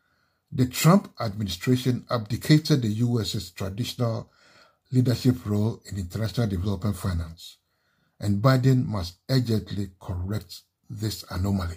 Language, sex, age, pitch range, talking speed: English, male, 60-79, 100-130 Hz, 100 wpm